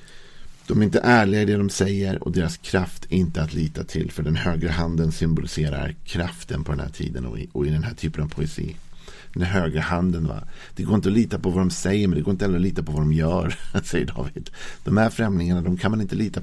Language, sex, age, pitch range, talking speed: Swedish, male, 50-69, 80-95 Hz, 245 wpm